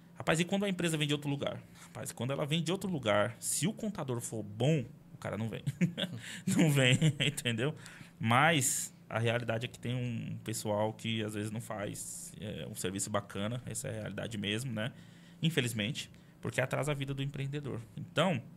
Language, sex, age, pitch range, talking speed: Portuguese, male, 20-39, 105-150 Hz, 185 wpm